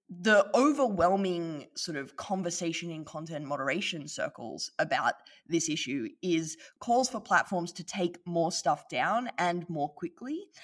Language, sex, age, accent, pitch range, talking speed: English, female, 20-39, Australian, 160-205 Hz, 135 wpm